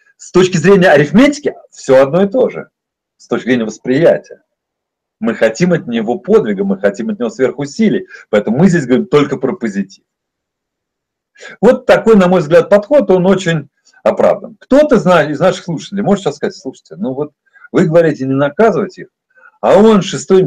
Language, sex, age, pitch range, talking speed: Russian, male, 40-59, 135-215 Hz, 165 wpm